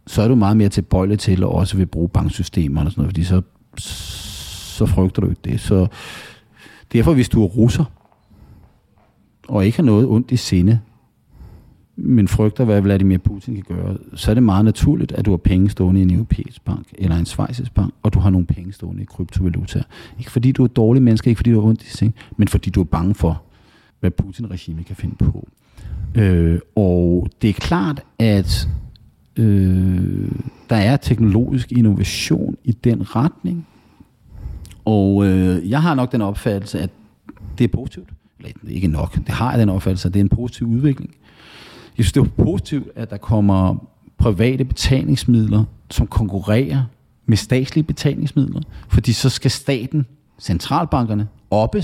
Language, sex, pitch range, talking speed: Danish, male, 95-125 Hz, 175 wpm